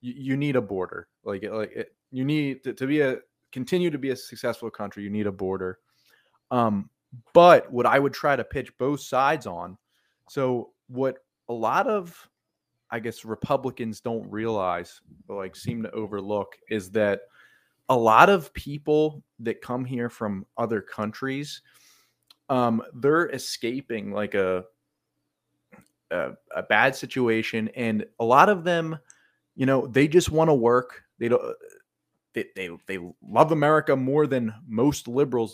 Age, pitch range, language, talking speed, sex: 30-49, 110-145 Hz, English, 155 wpm, male